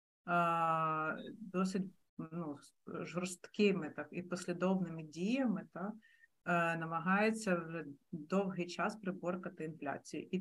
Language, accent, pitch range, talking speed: Ukrainian, native, 155-190 Hz, 85 wpm